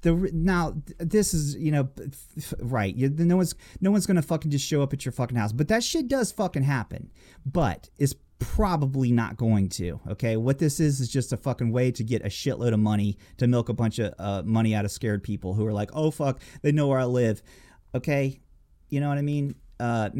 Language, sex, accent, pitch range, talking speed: English, male, American, 115-160 Hz, 220 wpm